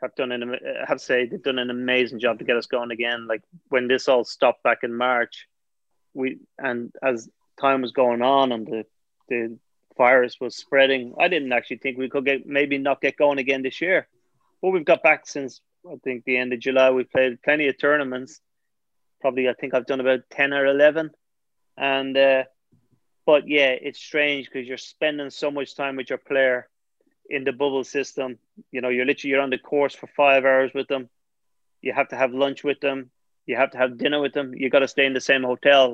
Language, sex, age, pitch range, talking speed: English, male, 30-49, 130-140 Hz, 215 wpm